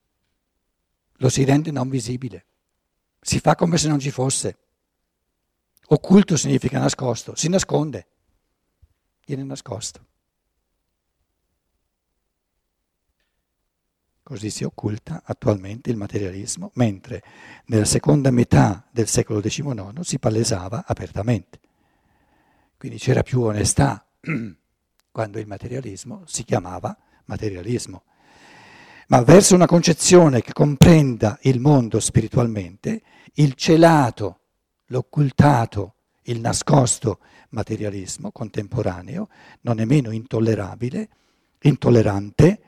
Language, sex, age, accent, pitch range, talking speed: Italian, male, 60-79, native, 90-140 Hz, 90 wpm